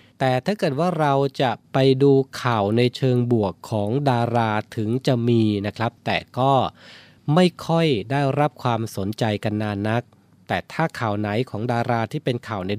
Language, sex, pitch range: Thai, male, 110-140 Hz